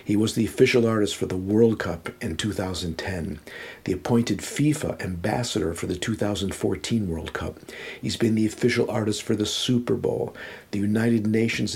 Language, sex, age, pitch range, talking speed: English, male, 50-69, 95-115 Hz, 165 wpm